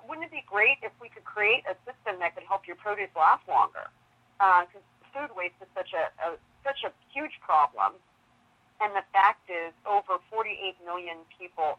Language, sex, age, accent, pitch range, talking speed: English, female, 30-49, American, 170-210 Hz, 190 wpm